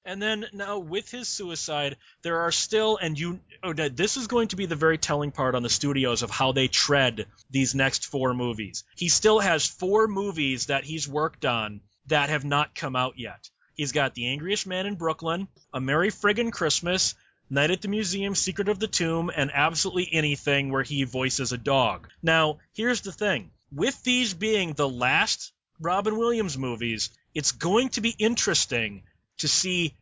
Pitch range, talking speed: 145-200 Hz, 185 wpm